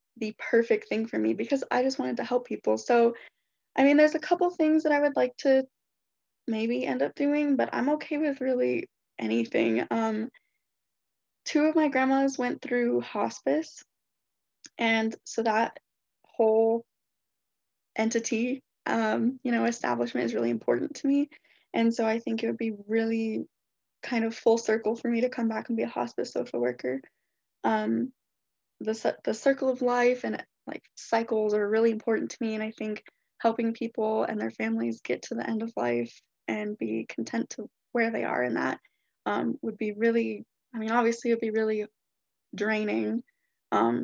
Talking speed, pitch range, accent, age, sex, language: 175 wpm, 205-255 Hz, American, 10-29, female, English